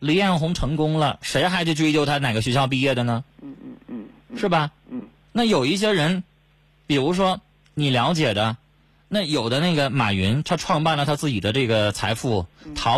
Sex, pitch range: male, 130-195 Hz